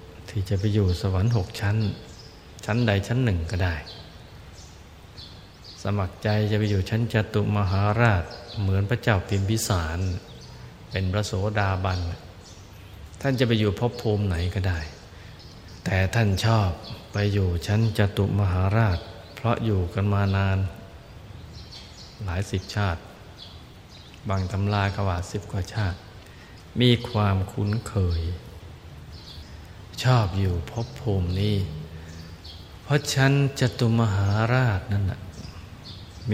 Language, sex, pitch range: Thai, male, 90-105 Hz